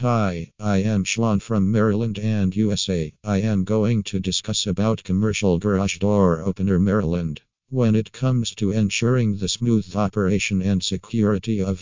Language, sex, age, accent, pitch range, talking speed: English, male, 50-69, American, 95-110 Hz, 150 wpm